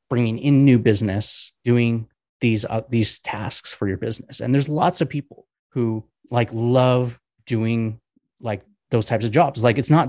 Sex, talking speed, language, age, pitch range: male, 175 wpm, English, 30-49, 110-135 Hz